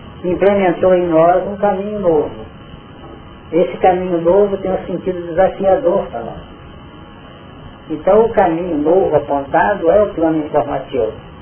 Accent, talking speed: Brazilian, 125 wpm